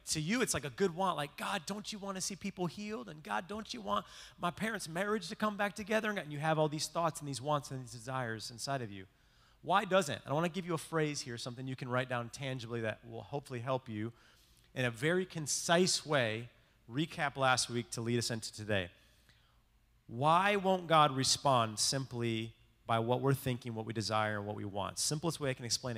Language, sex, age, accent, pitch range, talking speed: English, male, 30-49, American, 120-180 Hz, 230 wpm